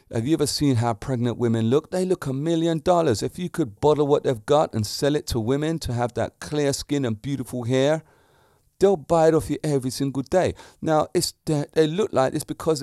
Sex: male